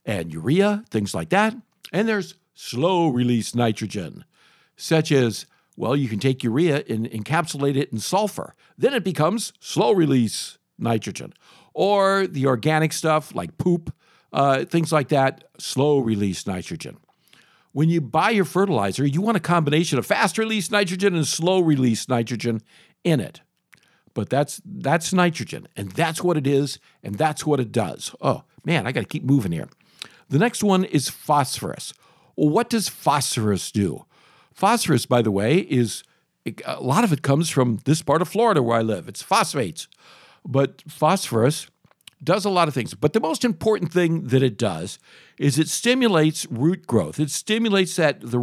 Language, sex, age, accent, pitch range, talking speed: English, male, 50-69, American, 130-180 Hz, 160 wpm